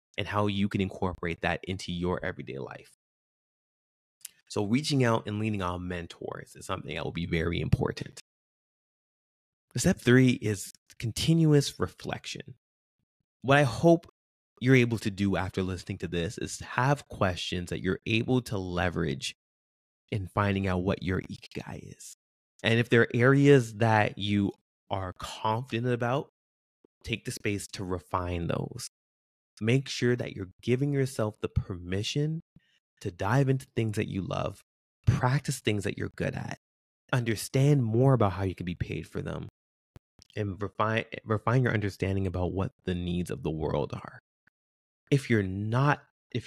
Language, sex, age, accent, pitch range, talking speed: English, male, 30-49, American, 90-120 Hz, 150 wpm